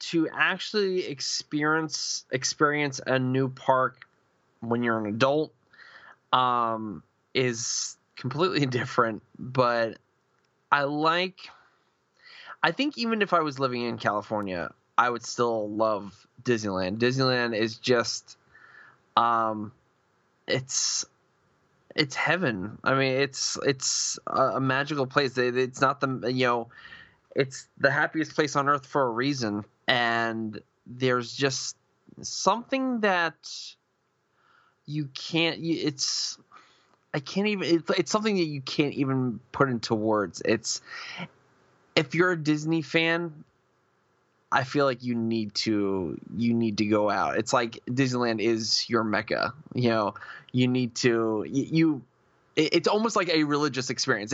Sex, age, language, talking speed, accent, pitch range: male, 20-39, English, 130 wpm, American, 115-160 Hz